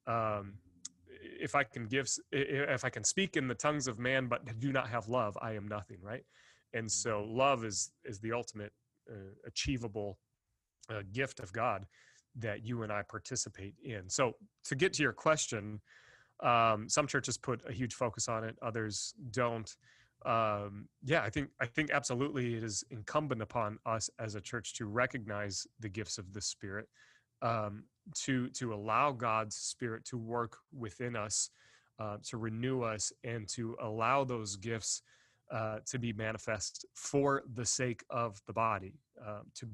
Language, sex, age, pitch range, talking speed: English, male, 30-49, 105-125 Hz, 170 wpm